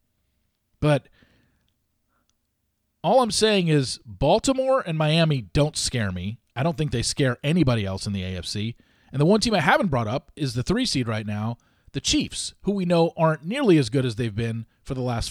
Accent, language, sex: American, English, male